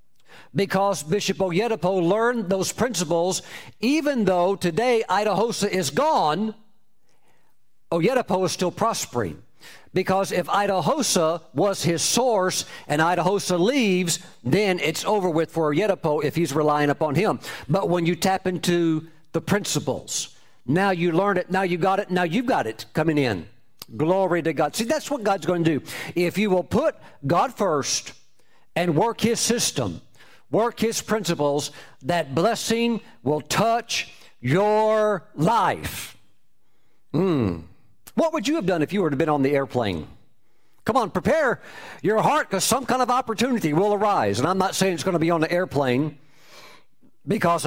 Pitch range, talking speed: 150-200 Hz, 155 wpm